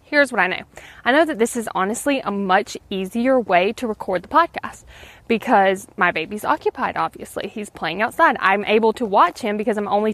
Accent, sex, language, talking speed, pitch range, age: American, female, English, 200 wpm, 195-255 Hz, 20-39